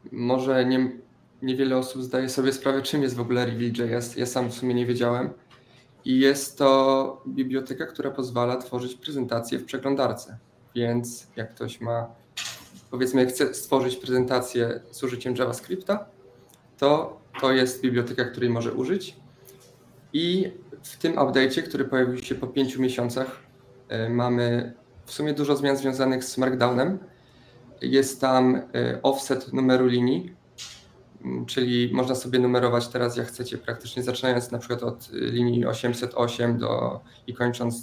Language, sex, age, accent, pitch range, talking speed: Polish, male, 20-39, native, 120-135 Hz, 140 wpm